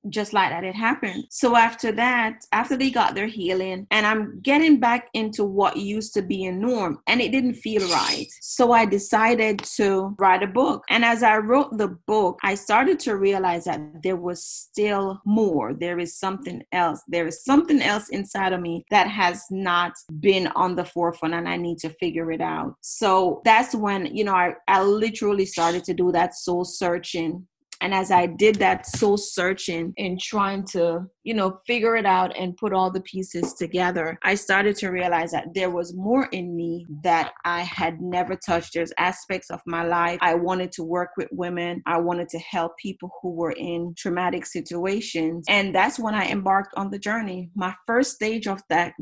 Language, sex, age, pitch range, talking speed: English, female, 30-49, 180-220 Hz, 195 wpm